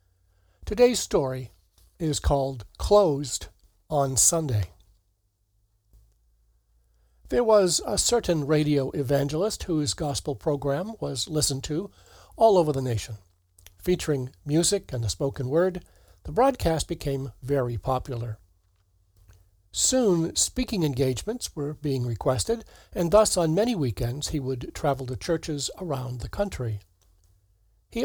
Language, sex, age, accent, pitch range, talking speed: English, male, 60-79, American, 100-160 Hz, 115 wpm